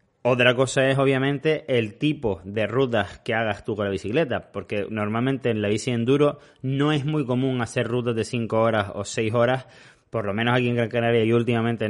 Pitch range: 110-135 Hz